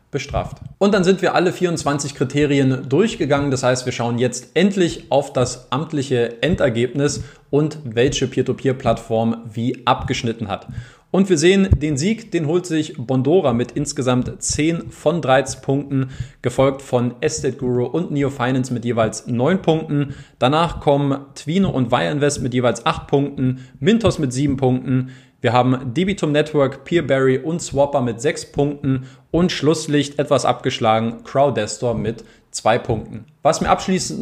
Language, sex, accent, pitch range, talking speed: German, male, German, 130-155 Hz, 150 wpm